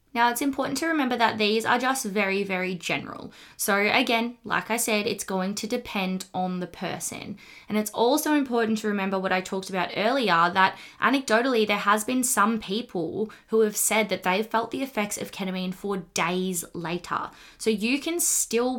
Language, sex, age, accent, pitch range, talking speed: English, female, 20-39, Australian, 185-225 Hz, 190 wpm